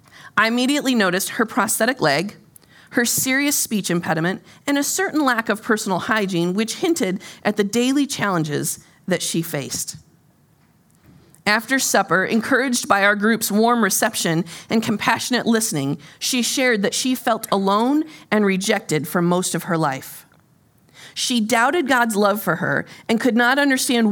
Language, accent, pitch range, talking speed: English, American, 175-240 Hz, 150 wpm